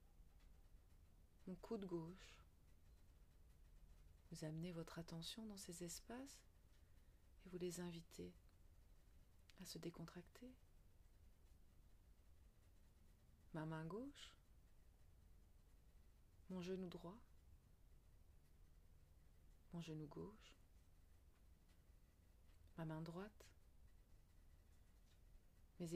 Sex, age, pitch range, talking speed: female, 30-49, 80-110 Hz, 70 wpm